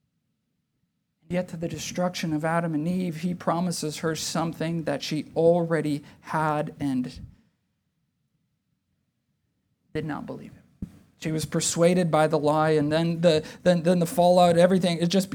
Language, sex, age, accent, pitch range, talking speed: English, male, 40-59, American, 170-225 Hz, 145 wpm